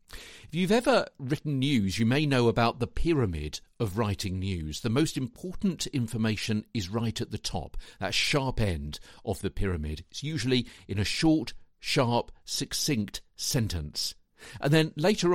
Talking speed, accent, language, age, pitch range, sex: 155 wpm, British, English, 50-69, 95-135 Hz, male